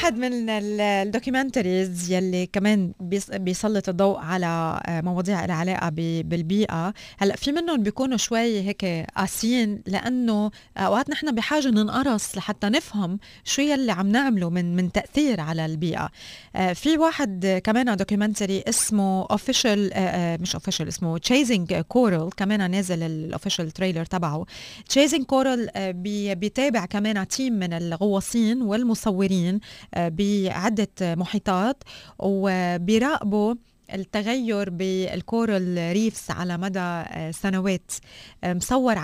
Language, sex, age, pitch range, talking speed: Arabic, female, 20-39, 185-230 Hz, 110 wpm